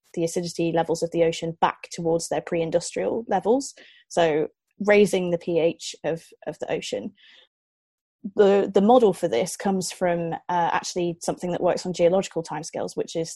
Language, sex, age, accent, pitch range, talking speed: English, female, 20-39, British, 170-195 Hz, 160 wpm